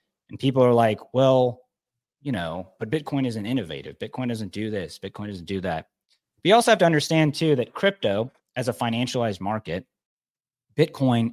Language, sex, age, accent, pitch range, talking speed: English, male, 30-49, American, 90-125 Hz, 170 wpm